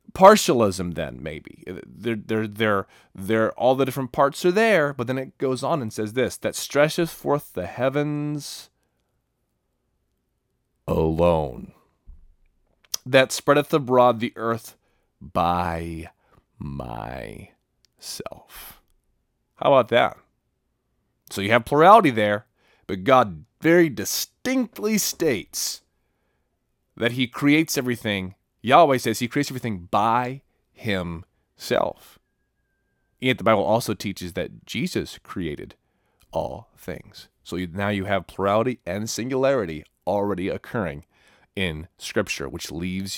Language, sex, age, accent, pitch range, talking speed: English, male, 30-49, American, 90-130 Hz, 115 wpm